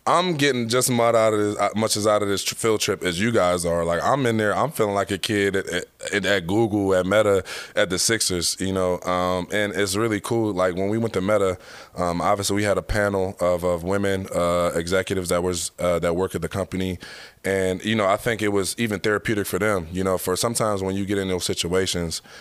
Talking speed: 240 wpm